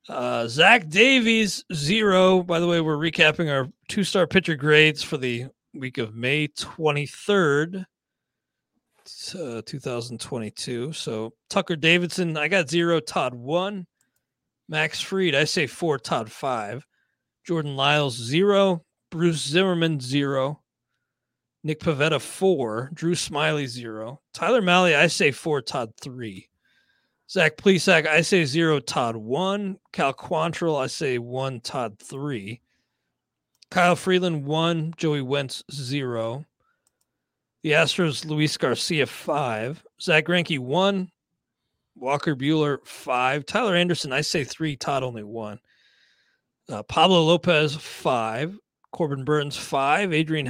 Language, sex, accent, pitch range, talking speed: English, male, American, 135-175 Hz, 120 wpm